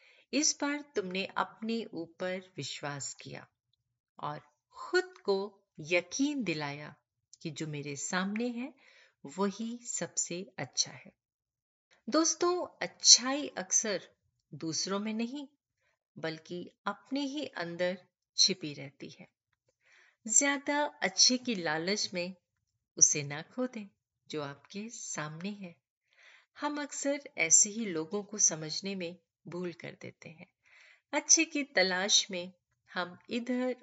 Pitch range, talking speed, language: 150-240 Hz, 115 wpm, Hindi